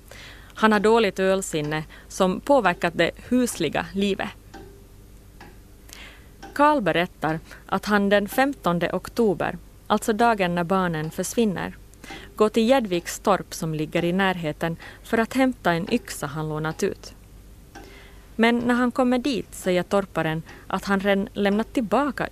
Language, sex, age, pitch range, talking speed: Swedish, female, 30-49, 160-215 Hz, 130 wpm